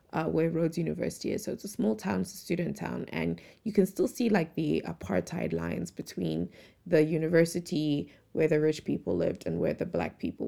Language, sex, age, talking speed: English, female, 20-39, 205 wpm